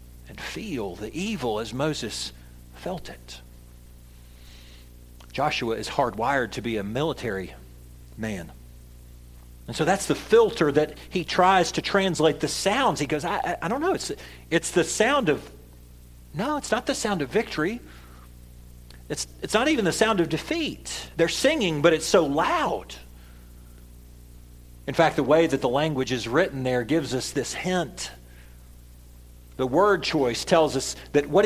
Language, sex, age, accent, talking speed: English, male, 40-59, American, 155 wpm